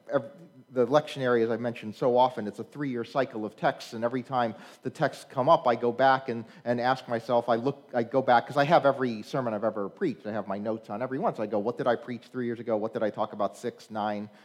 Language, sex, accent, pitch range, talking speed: English, male, American, 115-150 Hz, 260 wpm